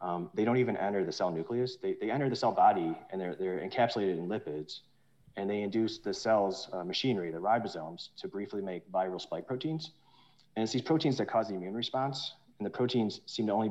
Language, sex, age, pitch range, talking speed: English, male, 30-49, 90-125 Hz, 220 wpm